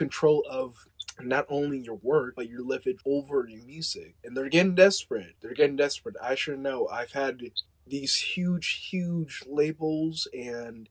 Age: 20-39